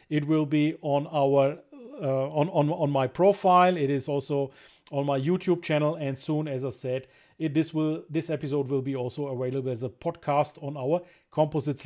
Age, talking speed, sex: 40-59, 190 wpm, male